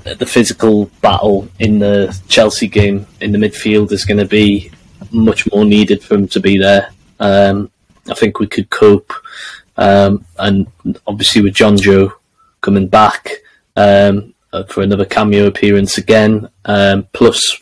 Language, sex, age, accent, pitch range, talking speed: English, male, 20-39, British, 95-105 Hz, 150 wpm